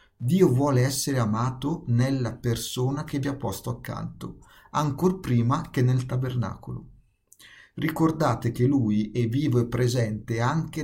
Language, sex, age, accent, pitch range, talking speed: Italian, male, 50-69, native, 115-135 Hz, 135 wpm